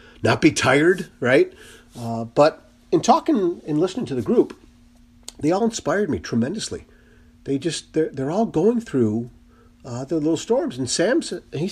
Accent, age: American, 50-69